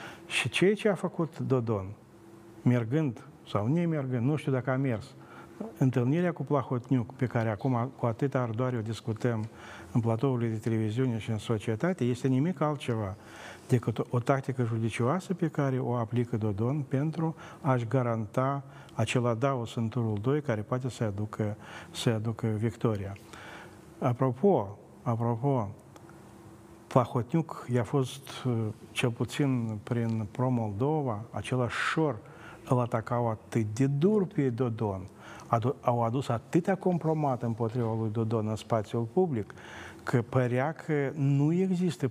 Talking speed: 135 wpm